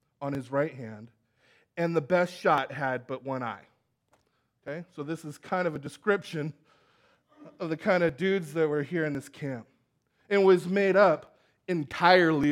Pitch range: 135-200 Hz